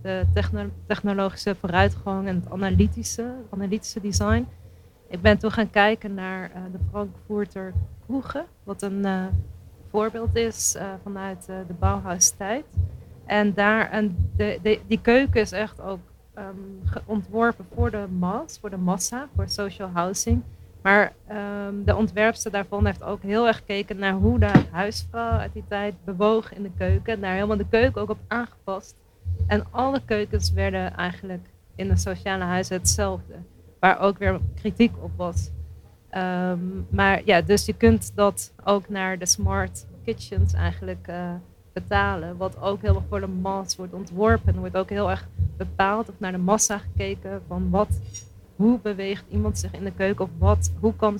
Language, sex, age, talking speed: Dutch, female, 40-59, 165 wpm